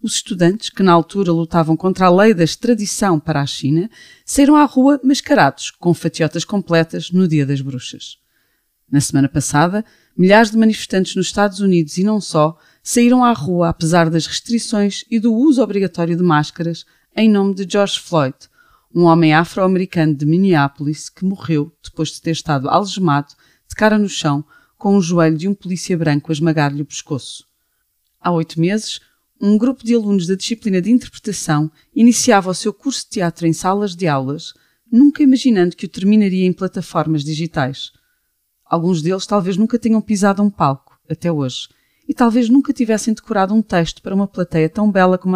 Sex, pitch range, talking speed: female, 160-215 Hz, 175 wpm